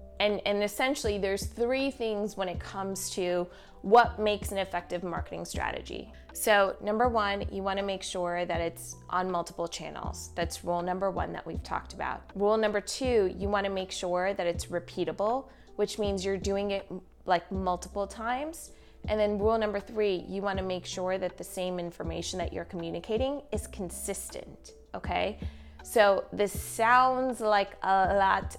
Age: 20-39